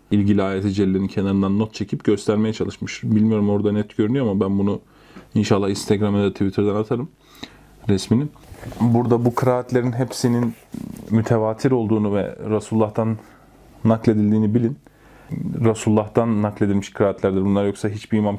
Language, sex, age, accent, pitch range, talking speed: Turkish, male, 30-49, native, 100-120 Hz, 125 wpm